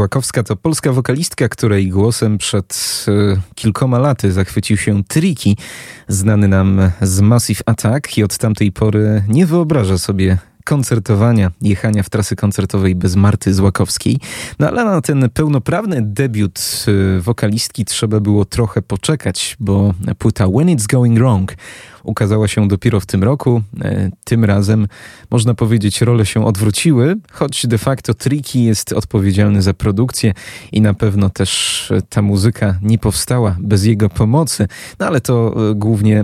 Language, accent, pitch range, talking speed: Polish, native, 100-120 Hz, 140 wpm